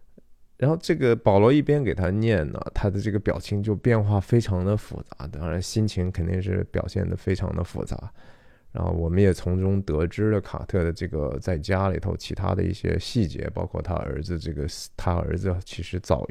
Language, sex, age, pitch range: Chinese, male, 20-39, 85-105 Hz